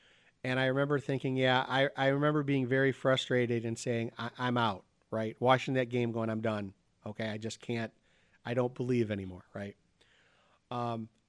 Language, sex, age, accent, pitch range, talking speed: English, male, 40-59, American, 120-140 Hz, 175 wpm